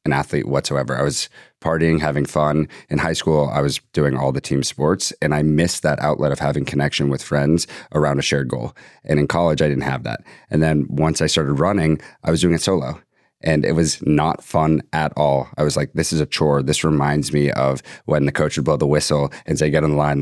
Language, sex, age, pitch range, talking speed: English, male, 30-49, 70-80 Hz, 240 wpm